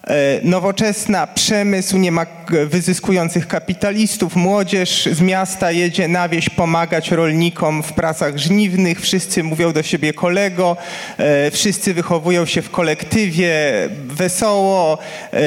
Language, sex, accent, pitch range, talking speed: Polish, male, native, 140-180 Hz, 110 wpm